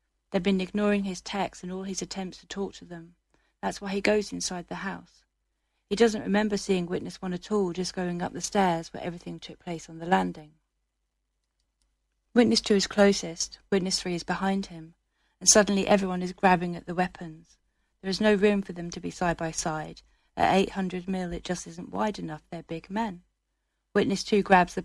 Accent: British